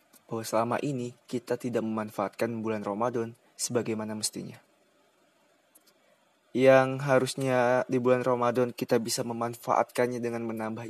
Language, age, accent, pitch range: Indonesian, 20-39, native, 115-130 Hz